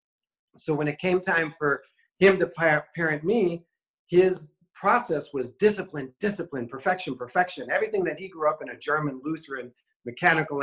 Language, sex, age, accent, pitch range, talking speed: English, male, 40-59, American, 130-165 Hz, 150 wpm